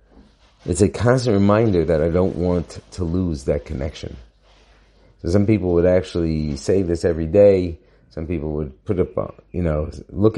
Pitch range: 80-100 Hz